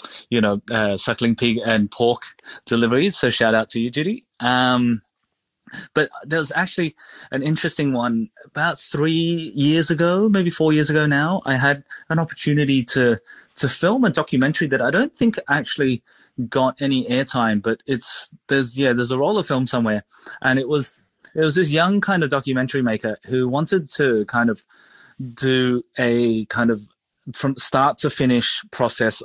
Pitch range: 115-150 Hz